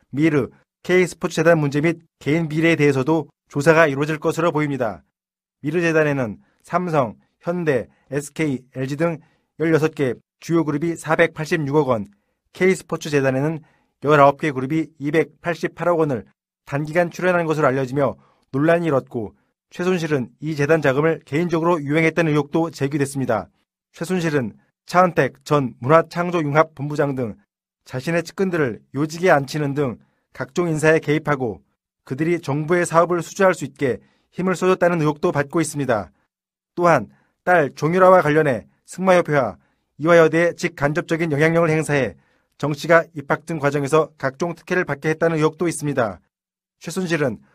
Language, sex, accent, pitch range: Korean, male, native, 140-170 Hz